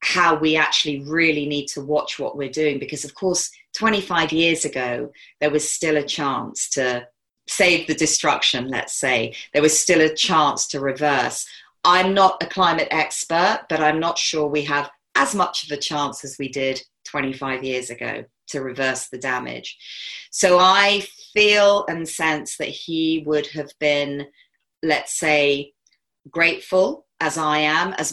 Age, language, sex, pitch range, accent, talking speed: 40-59, English, female, 150-180 Hz, British, 165 wpm